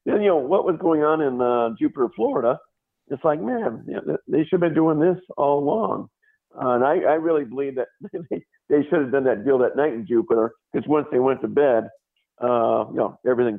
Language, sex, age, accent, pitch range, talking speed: English, male, 50-69, American, 120-150 Hz, 215 wpm